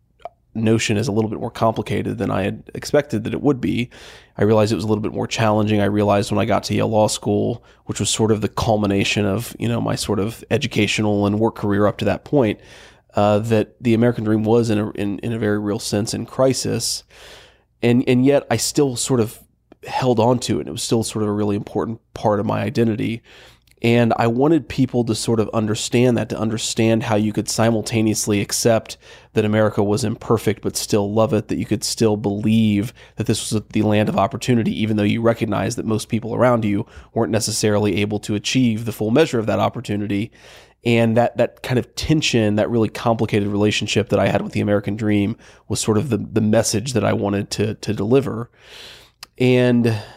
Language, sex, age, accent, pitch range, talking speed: English, male, 30-49, American, 105-115 Hz, 215 wpm